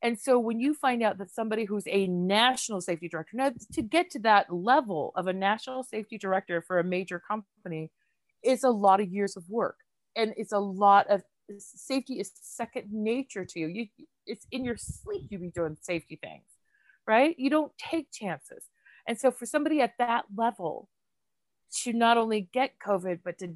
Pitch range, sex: 190-245 Hz, female